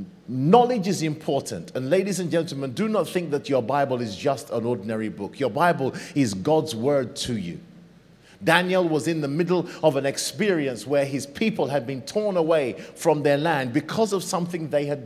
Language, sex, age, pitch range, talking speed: English, male, 30-49, 135-175 Hz, 190 wpm